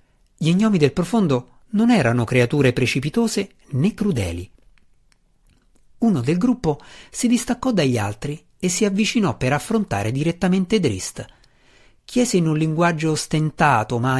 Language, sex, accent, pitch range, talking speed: Italian, male, native, 120-195 Hz, 125 wpm